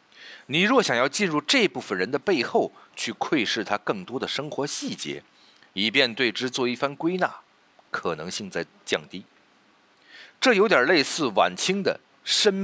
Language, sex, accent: Chinese, male, native